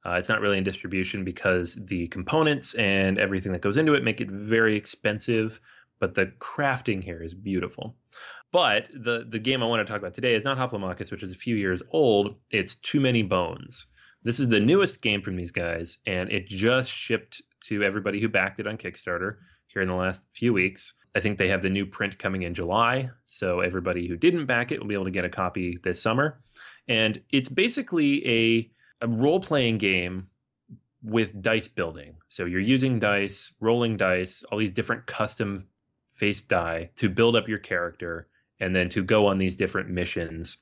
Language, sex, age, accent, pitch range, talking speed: English, male, 30-49, American, 95-115 Hz, 200 wpm